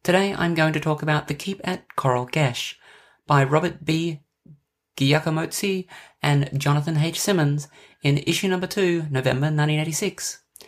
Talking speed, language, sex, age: 140 wpm, English, male, 30-49